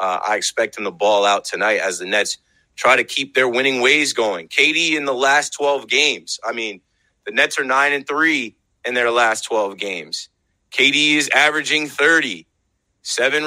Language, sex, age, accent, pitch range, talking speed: English, male, 30-49, American, 125-175 Hz, 185 wpm